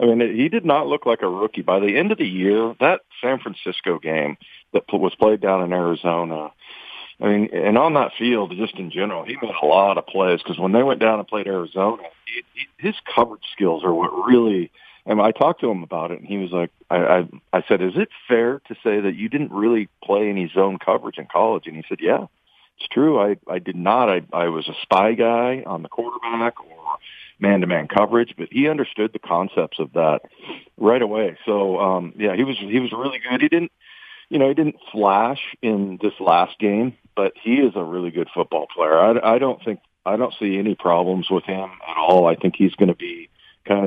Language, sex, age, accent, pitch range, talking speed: English, male, 40-59, American, 95-120 Hz, 225 wpm